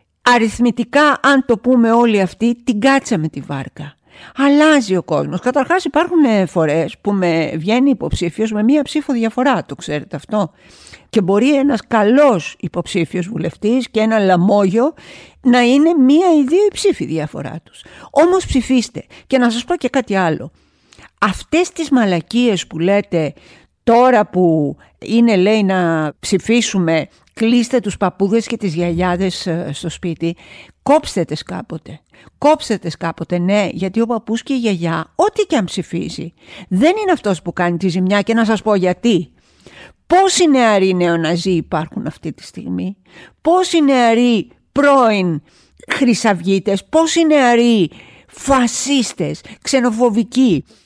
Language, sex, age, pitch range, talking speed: Greek, female, 50-69, 185-265 Hz, 140 wpm